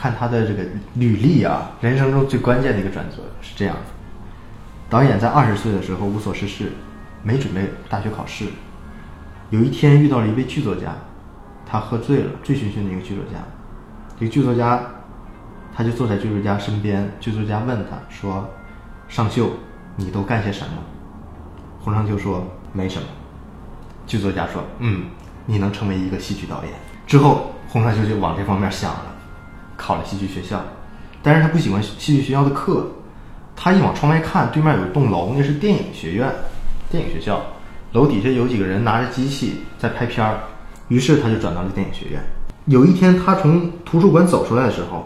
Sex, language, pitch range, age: male, Chinese, 95-125 Hz, 20-39